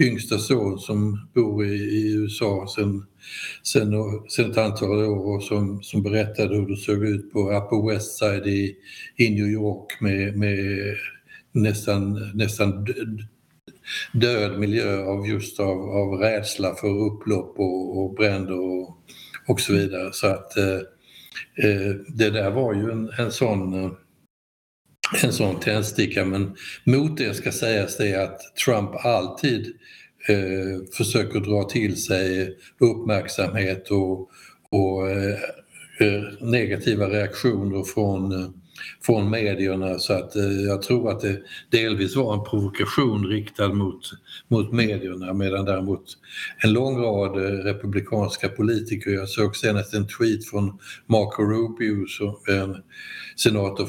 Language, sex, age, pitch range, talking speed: Swedish, male, 60-79, 95-105 Hz, 130 wpm